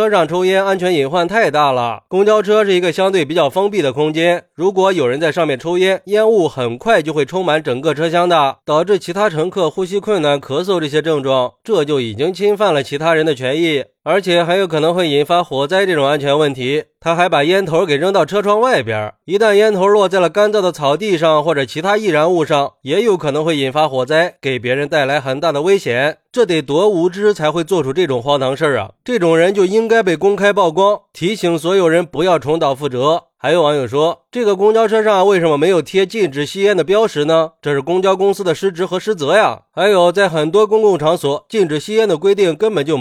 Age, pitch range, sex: 20-39, 155-205 Hz, male